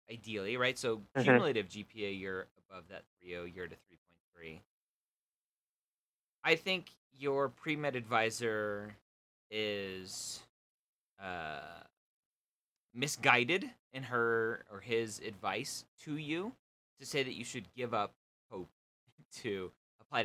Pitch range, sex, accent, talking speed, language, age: 110-165 Hz, male, American, 115 wpm, English, 30-49